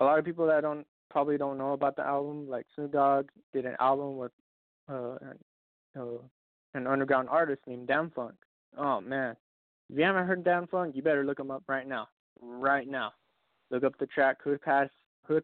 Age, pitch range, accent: 20-39, 120-140 Hz, American